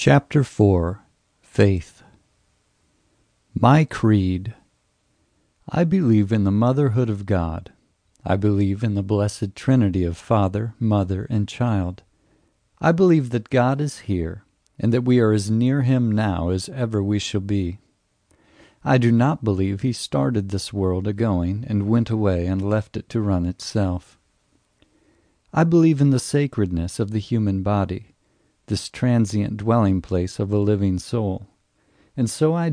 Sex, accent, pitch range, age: male, American, 100-125 Hz, 50-69